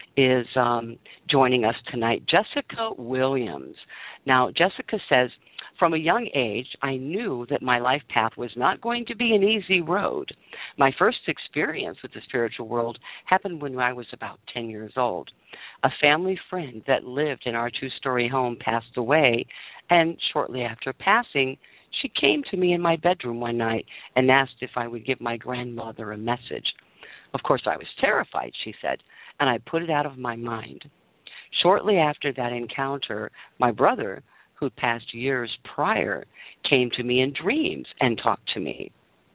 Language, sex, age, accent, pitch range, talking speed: English, female, 50-69, American, 120-160 Hz, 170 wpm